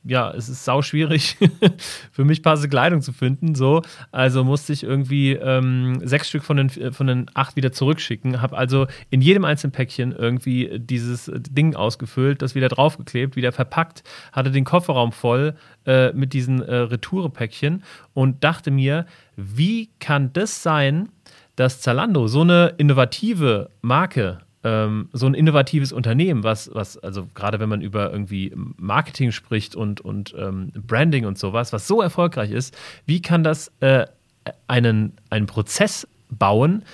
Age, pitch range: 30-49, 120-155 Hz